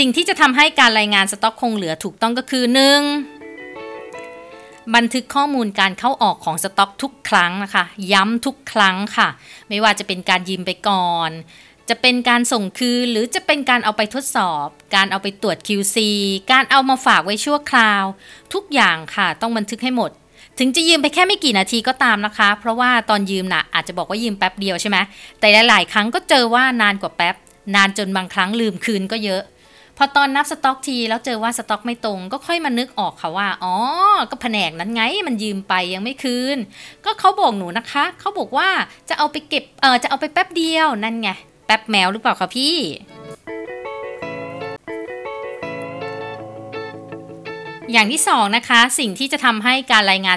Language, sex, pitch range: Thai, female, 190-255 Hz